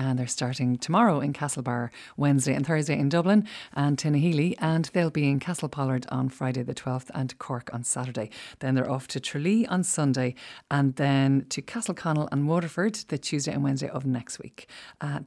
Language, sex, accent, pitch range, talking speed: English, female, Irish, 130-165 Hz, 195 wpm